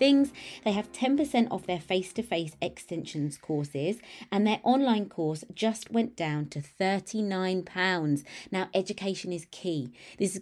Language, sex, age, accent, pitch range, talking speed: English, female, 20-39, British, 155-210 Hz, 140 wpm